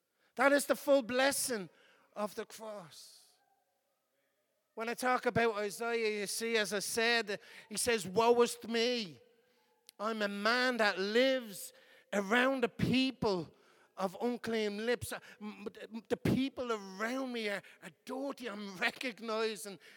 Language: English